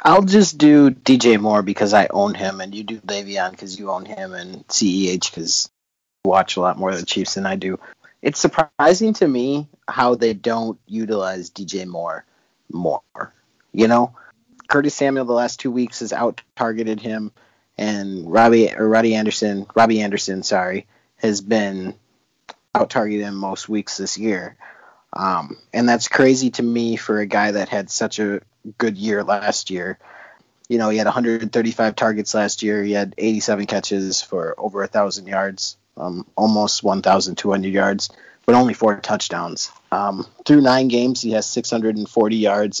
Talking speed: 170 wpm